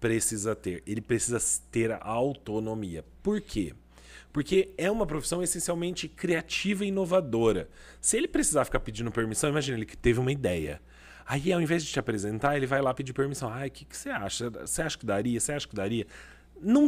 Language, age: Portuguese, 30-49